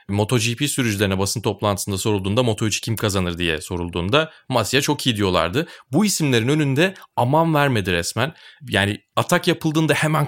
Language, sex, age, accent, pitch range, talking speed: Turkish, male, 30-49, native, 100-135 Hz, 140 wpm